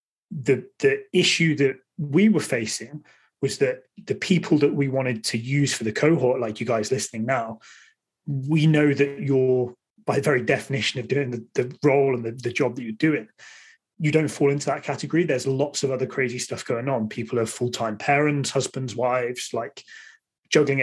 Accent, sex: British, male